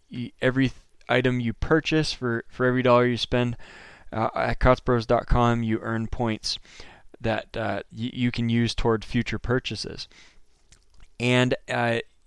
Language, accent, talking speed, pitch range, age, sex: English, American, 125 wpm, 115-135 Hz, 20-39, male